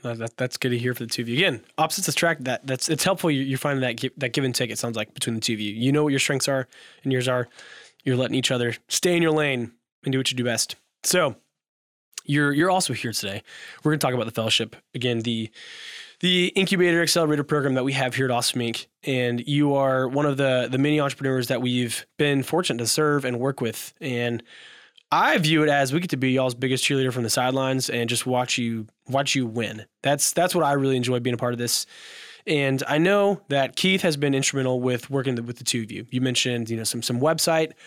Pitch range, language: 120-150 Hz, English